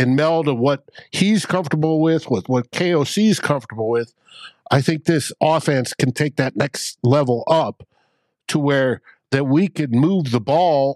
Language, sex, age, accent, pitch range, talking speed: English, male, 60-79, American, 120-155 Hz, 170 wpm